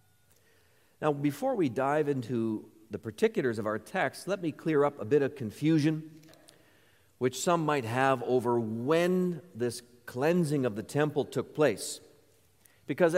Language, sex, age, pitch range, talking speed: English, male, 40-59, 130-190 Hz, 145 wpm